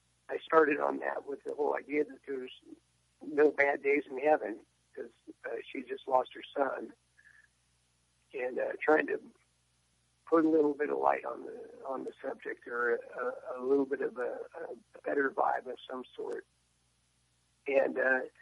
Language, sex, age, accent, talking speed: English, male, 60-79, American, 165 wpm